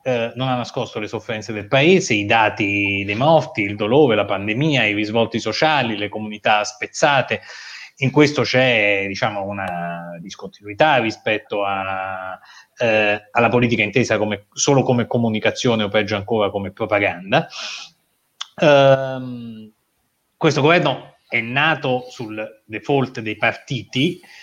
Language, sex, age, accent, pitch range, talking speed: Italian, male, 30-49, native, 105-130 Hz, 115 wpm